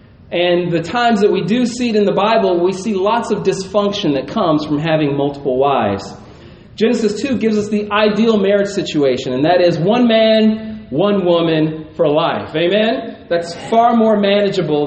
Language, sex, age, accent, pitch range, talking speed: English, male, 40-59, American, 165-215 Hz, 180 wpm